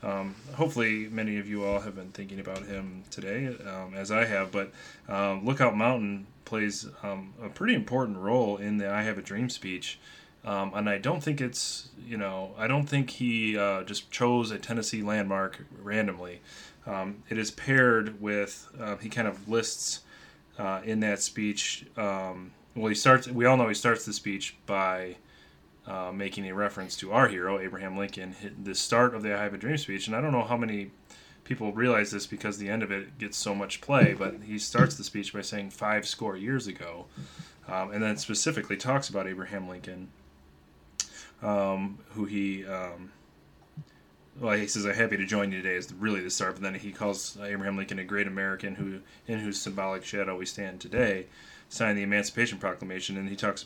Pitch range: 95-110 Hz